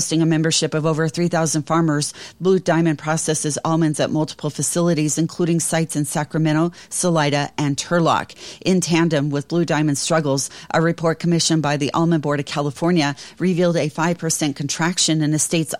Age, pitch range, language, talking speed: 40-59, 150-170 Hz, English, 160 wpm